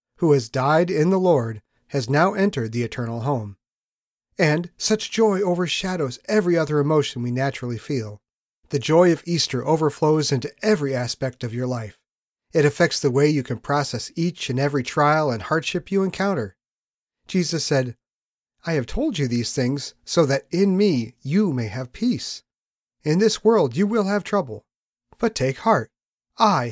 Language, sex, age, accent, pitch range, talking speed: English, male, 40-59, American, 125-175 Hz, 170 wpm